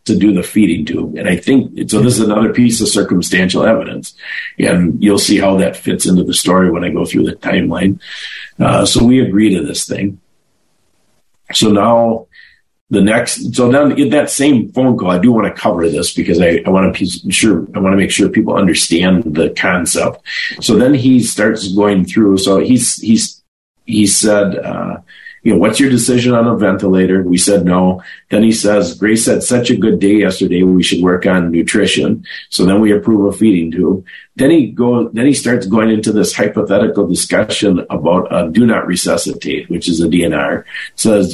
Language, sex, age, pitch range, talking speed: English, male, 50-69, 95-110 Hz, 200 wpm